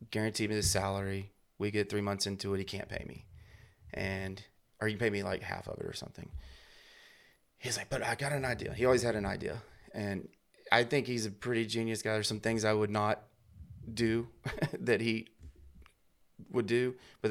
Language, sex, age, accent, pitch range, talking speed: English, male, 30-49, American, 100-115 Hz, 200 wpm